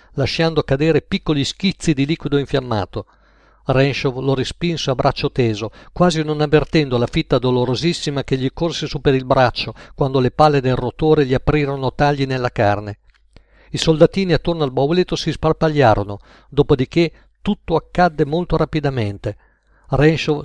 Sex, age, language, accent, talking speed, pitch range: male, 50-69, Italian, native, 145 wpm, 125-155 Hz